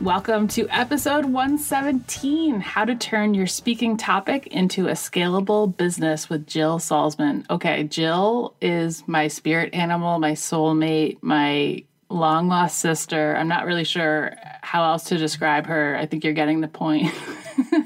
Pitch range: 165-215 Hz